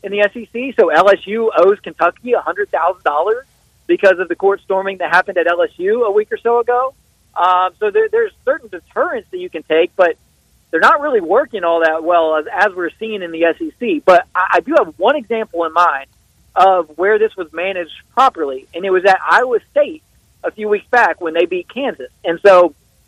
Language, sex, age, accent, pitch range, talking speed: English, male, 40-59, American, 165-220 Hz, 210 wpm